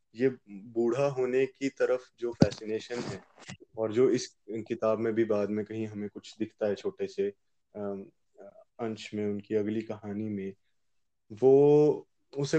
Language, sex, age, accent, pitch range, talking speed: Hindi, male, 20-39, native, 110-135 Hz, 150 wpm